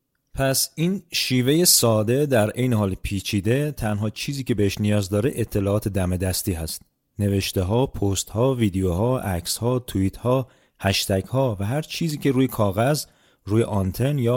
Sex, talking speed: male, 160 wpm